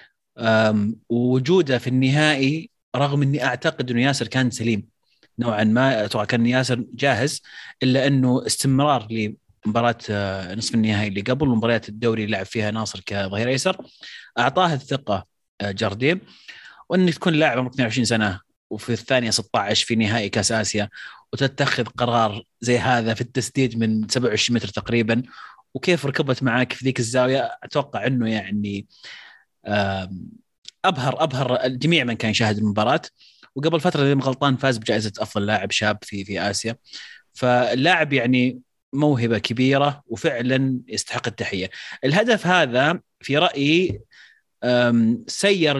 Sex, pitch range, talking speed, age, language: male, 110-135 Hz, 125 wpm, 30-49, Arabic